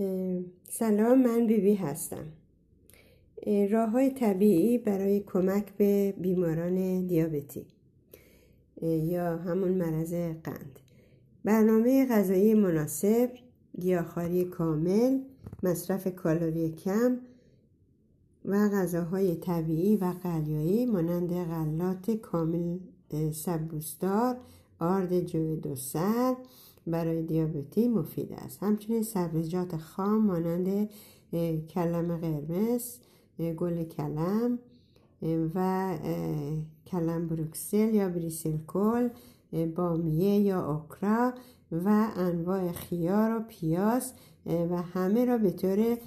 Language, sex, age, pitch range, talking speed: Persian, female, 50-69, 165-210 Hz, 90 wpm